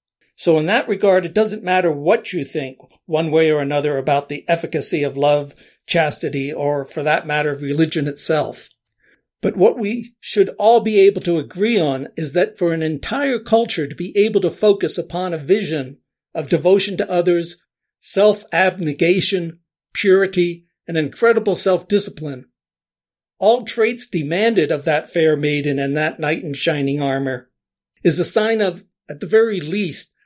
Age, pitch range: 60-79, 155-205 Hz